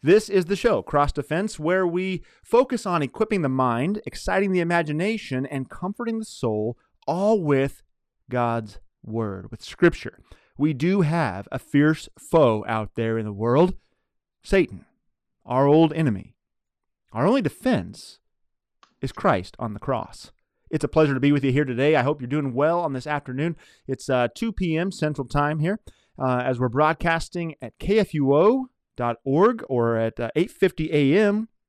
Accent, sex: American, male